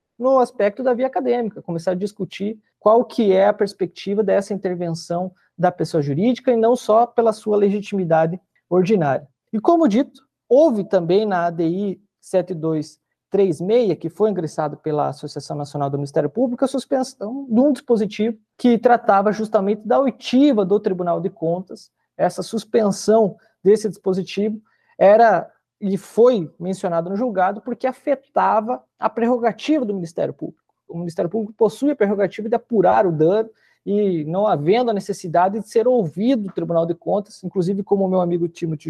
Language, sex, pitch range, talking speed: Portuguese, male, 180-225 Hz, 155 wpm